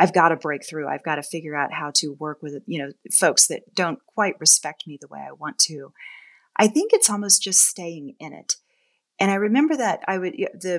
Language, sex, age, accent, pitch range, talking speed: English, female, 30-49, American, 155-195 Hz, 235 wpm